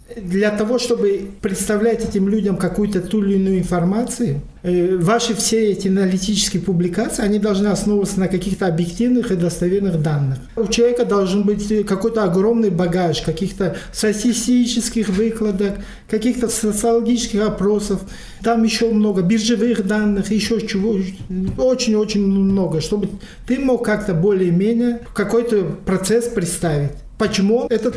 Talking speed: 120 wpm